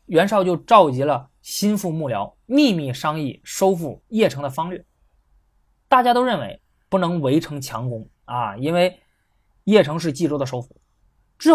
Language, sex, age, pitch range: Chinese, male, 20-39, 130-195 Hz